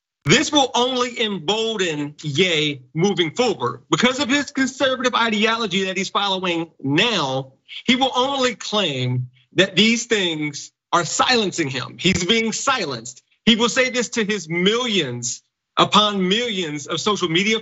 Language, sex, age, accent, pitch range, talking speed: English, male, 40-59, American, 165-215 Hz, 140 wpm